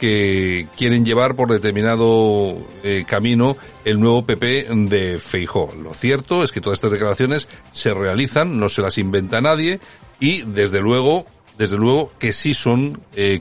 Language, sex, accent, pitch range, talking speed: Spanish, male, Spanish, 95-115 Hz, 155 wpm